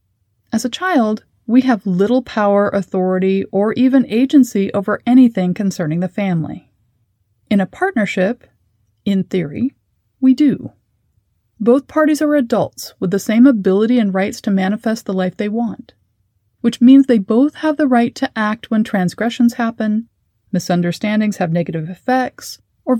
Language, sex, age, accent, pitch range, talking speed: English, female, 30-49, American, 180-240 Hz, 145 wpm